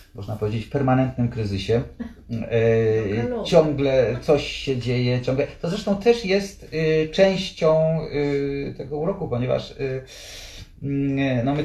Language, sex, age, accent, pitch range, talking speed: Polish, male, 40-59, native, 105-140 Hz, 100 wpm